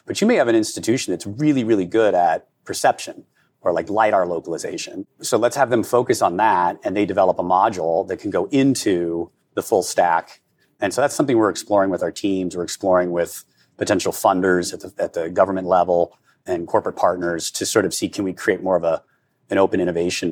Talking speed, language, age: 205 wpm, English, 30-49